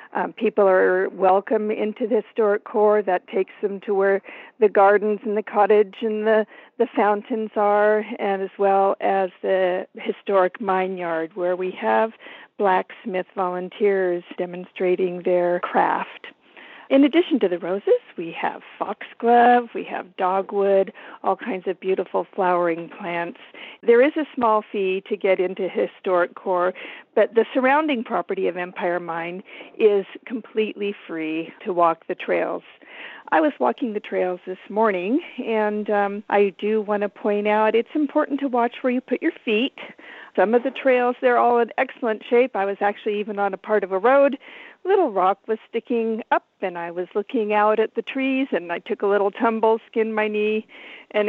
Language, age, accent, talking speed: English, 50-69, American, 170 wpm